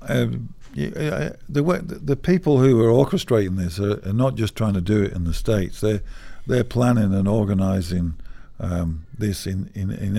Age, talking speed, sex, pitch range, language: 50-69, 170 wpm, male, 90-110 Hz, English